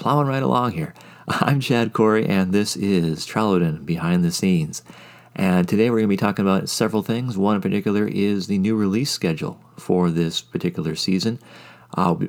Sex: male